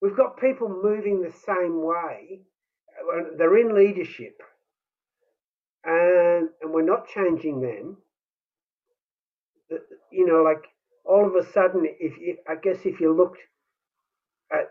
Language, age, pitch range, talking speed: English, 50-69, 160-260 Hz, 125 wpm